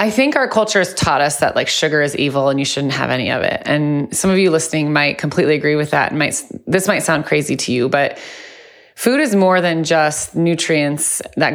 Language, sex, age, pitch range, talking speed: English, female, 30-49, 150-200 Hz, 230 wpm